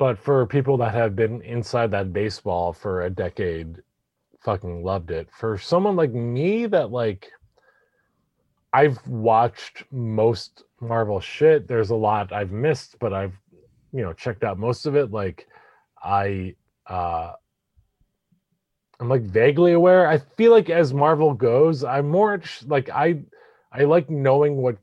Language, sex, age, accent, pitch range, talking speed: English, male, 30-49, American, 105-140 Hz, 145 wpm